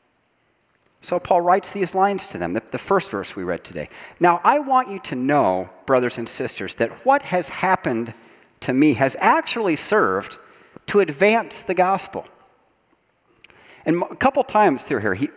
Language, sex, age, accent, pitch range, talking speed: English, male, 40-59, American, 125-185 Hz, 165 wpm